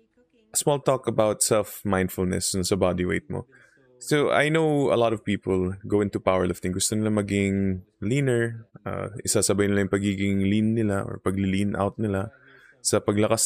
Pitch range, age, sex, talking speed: 95-125 Hz, 20-39, male, 160 wpm